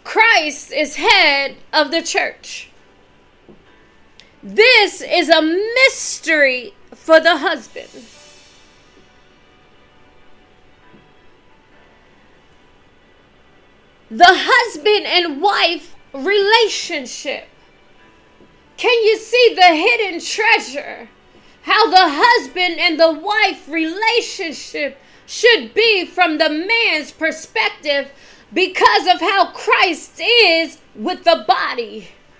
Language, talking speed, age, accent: English, 85 wpm, 20-39, American